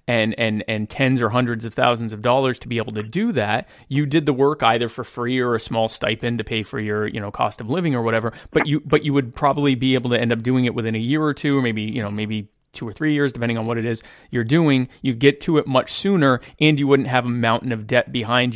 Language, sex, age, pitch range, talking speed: English, male, 30-49, 115-140 Hz, 280 wpm